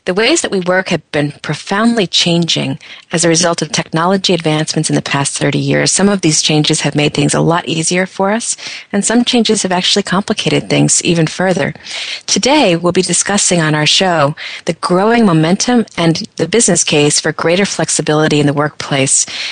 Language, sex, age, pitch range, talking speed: English, female, 40-59, 150-185 Hz, 190 wpm